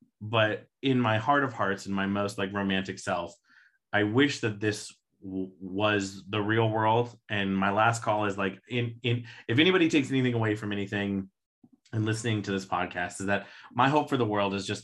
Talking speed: 200 wpm